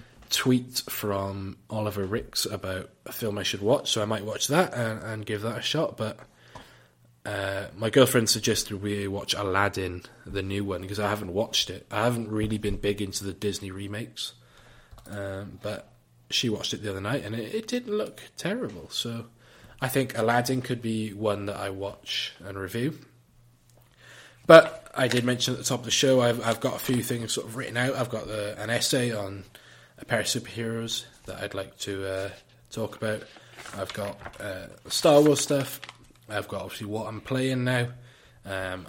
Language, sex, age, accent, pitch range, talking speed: English, male, 20-39, British, 100-120 Hz, 190 wpm